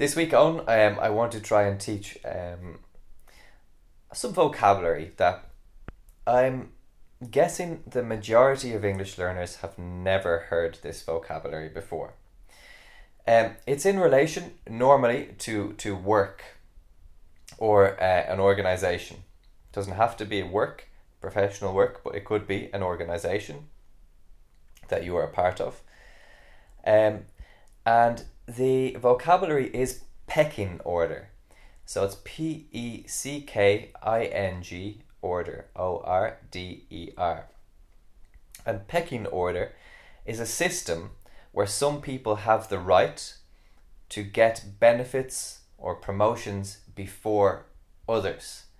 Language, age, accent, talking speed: English, 20-39, Irish, 115 wpm